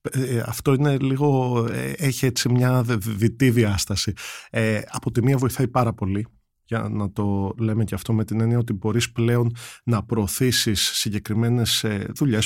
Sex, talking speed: male, 150 wpm